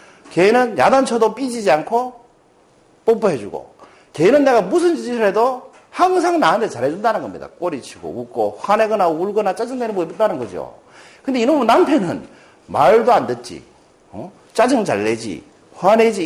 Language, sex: Korean, male